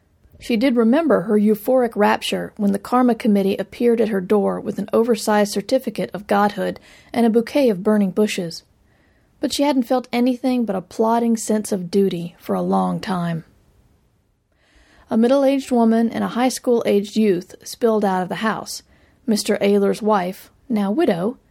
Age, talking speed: 40-59, 165 wpm